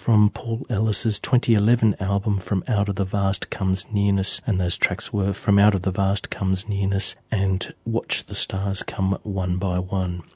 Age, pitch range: 40-59, 95-105 Hz